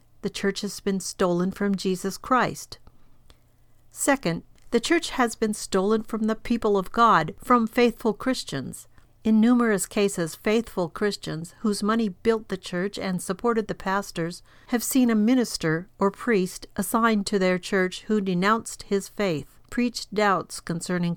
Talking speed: 150 wpm